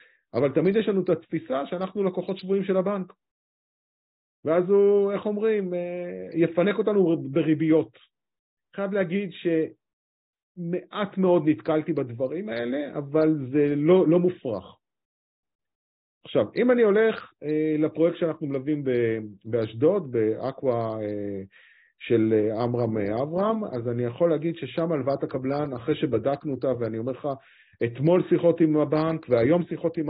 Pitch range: 115-175 Hz